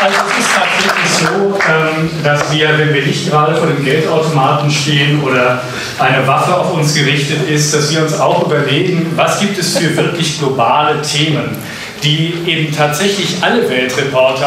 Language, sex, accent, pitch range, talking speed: German, male, German, 140-180 Hz, 160 wpm